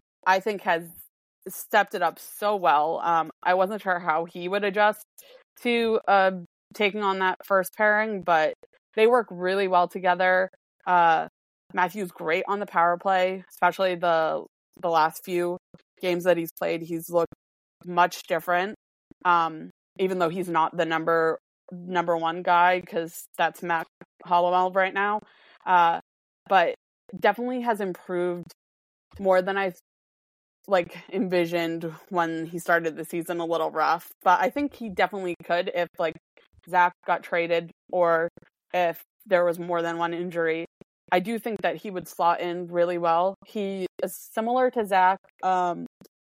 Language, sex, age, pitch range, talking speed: English, female, 20-39, 170-195 Hz, 155 wpm